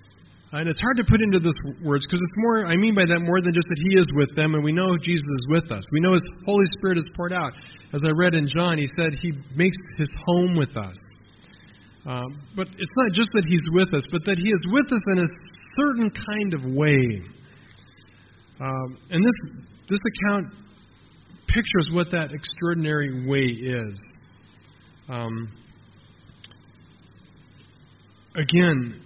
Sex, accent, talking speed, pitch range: male, American, 175 wpm, 120-180 Hz